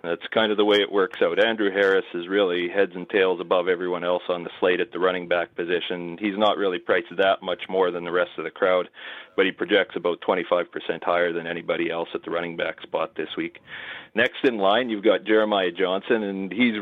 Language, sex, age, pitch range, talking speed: English, male, 40-59, 90-115 Hz, 230 wpm